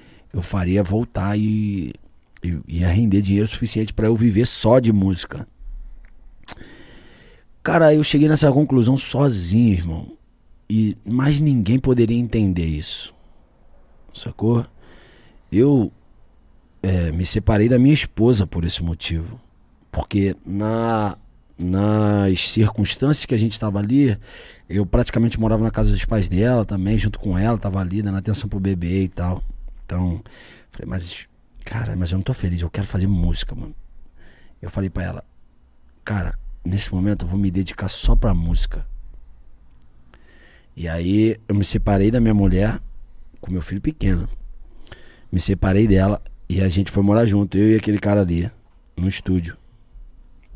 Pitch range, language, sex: 85-110 Hz, Portuguese, male